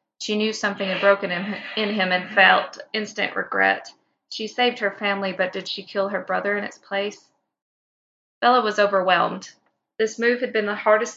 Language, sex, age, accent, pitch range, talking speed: English, female, 20-39, American, 185-215 Hz, 175 wpm